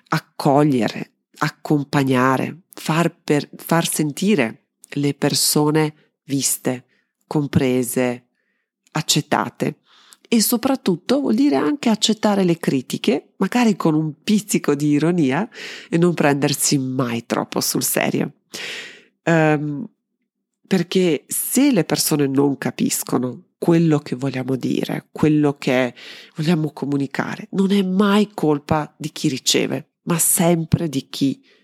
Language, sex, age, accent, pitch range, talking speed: Italian, female, 40-59, native, 140-195 Hz, 110 wpm